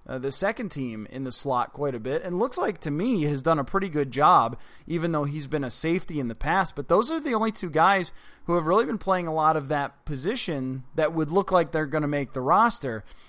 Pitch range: 140-180 Hz